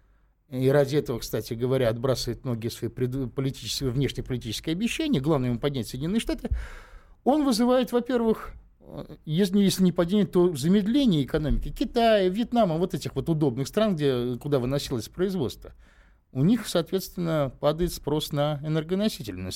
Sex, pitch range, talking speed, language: male, 125-180 Hz, 140 wpm, Russian